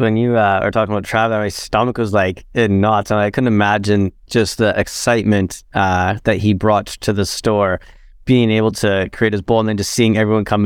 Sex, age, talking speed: male, 20-39, 220 wpm